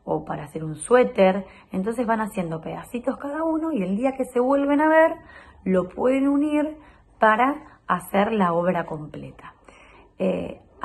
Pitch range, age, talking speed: 175-240 Hz, 30-49, 155 wpm